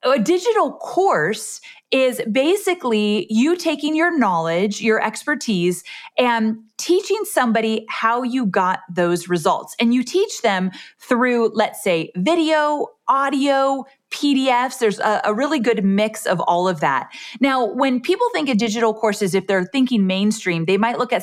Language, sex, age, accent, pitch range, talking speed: English, female, 30-49, American, 195-255 Hz, 150 wpm